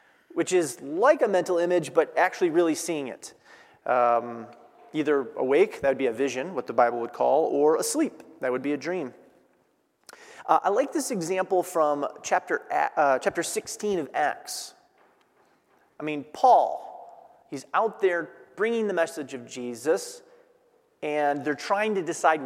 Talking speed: 160 wpm